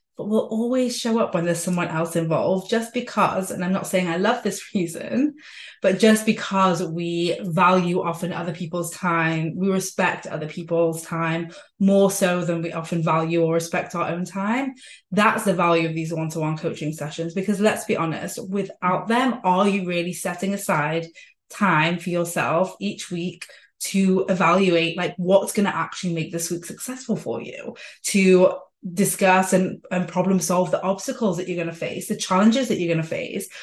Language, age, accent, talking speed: English, 20-39, British, 180 wpm